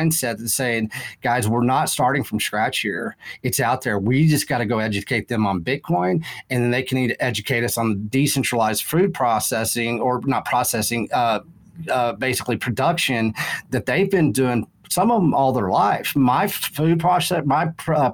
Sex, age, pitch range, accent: male, 40-59, 120-150 Hz, American